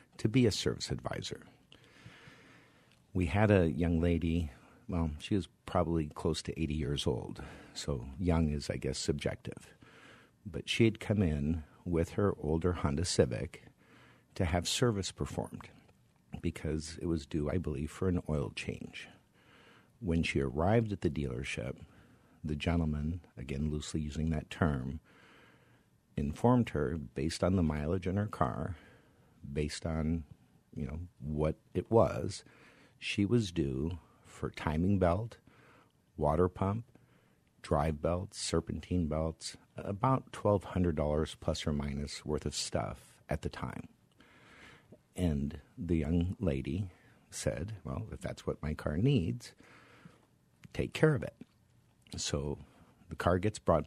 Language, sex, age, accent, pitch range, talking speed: English, male, 50-69, American, 75-95 Hz, 140 wpm